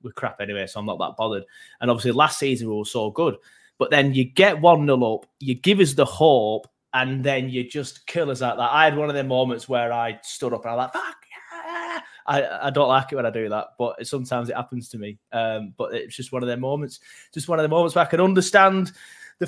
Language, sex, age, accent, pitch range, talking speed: English, male, 20-39, British, 125-155 Hz, 260 wpm